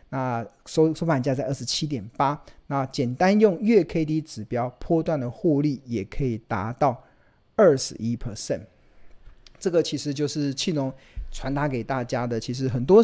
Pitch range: 125-160 Hz